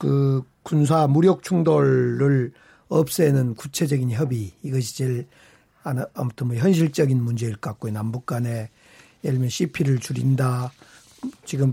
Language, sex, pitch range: Korean, male, 130-180 Hz